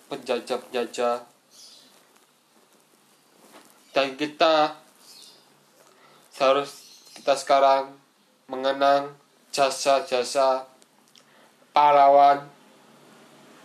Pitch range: 125-140 Hz